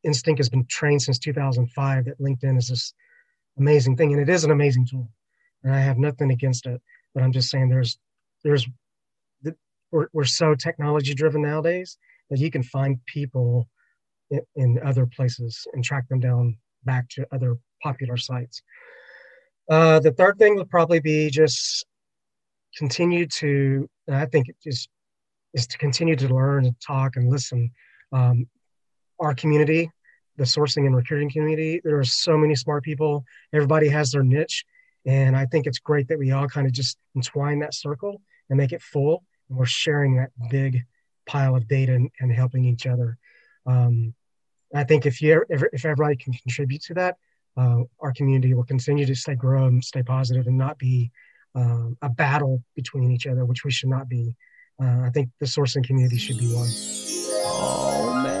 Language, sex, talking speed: English, male, 180 wpm